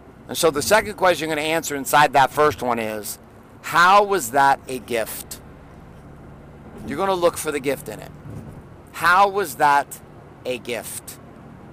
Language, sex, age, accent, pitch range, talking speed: English, male, 50-69, American, 125-170 Hz, 170 wpm